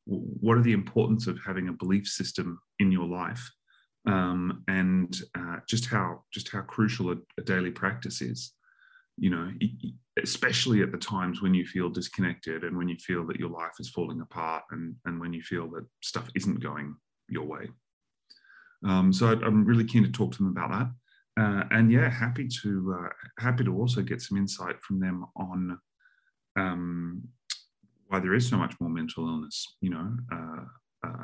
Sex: male